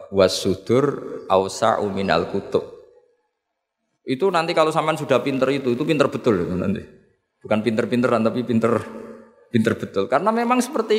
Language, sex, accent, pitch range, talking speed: Indonesian, male, native, 125-195 Hz, 130 wpm